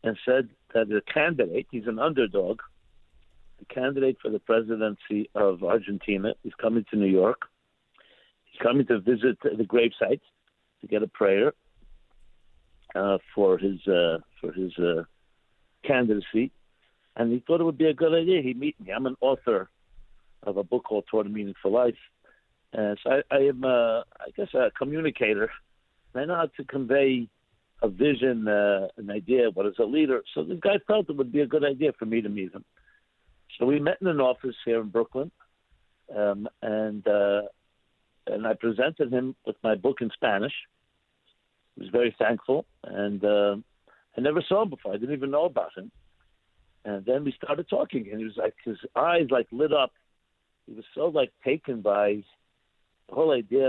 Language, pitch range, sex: English, 105-140 Hz, male